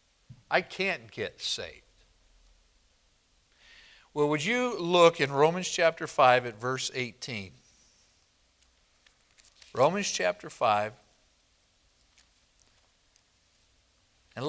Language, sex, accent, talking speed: English, male, American, 80 wpm